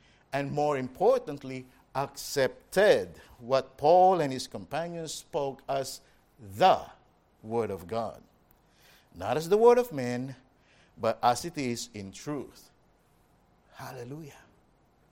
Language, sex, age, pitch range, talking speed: English, male, 50-69, 165-210 Hz, 110 wpm